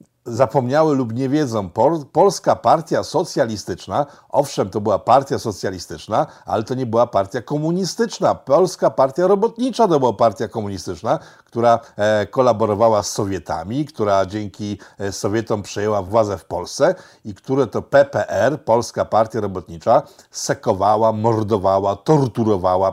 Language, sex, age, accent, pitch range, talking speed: Polish, male, 50-69, native, 105-145 Hz, 120 wpm